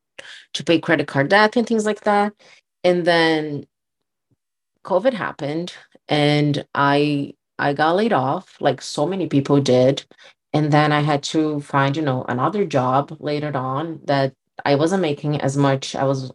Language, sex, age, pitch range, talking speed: English, female, 30-49, 140-170 Hz, 155 wpm